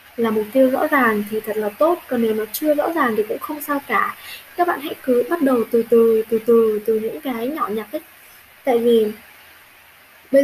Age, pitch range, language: 10-29, 220-280 Hz, Vietnamese